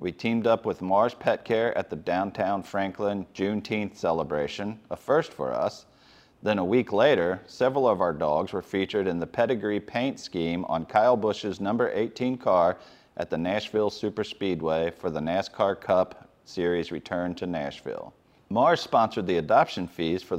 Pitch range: 90-120 Hz